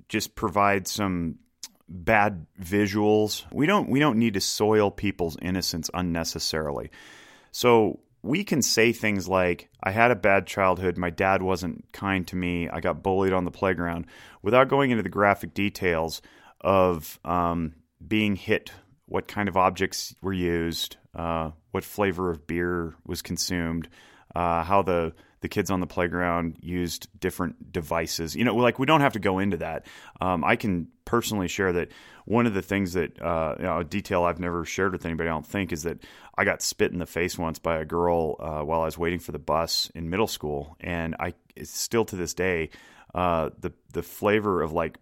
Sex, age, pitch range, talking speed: male, 30-49, 85-105 Hz, 190 wpm